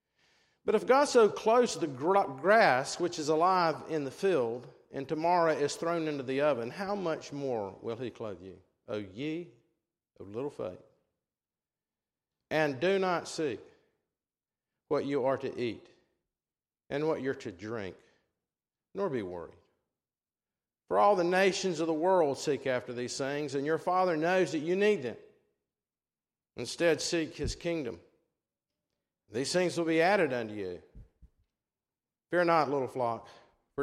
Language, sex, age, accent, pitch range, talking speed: English, male, 50-69, American, 130-175 Hz, 150 wpm